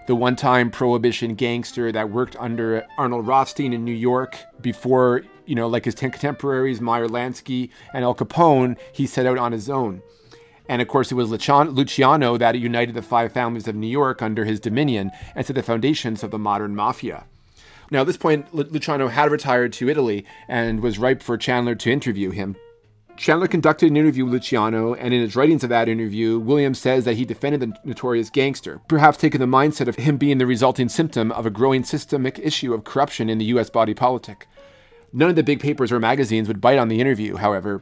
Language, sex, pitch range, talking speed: English, male, 115-140 Hz, 200 wpm